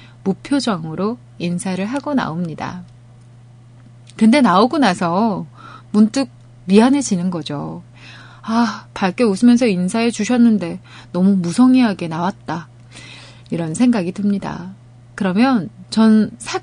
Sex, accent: female, native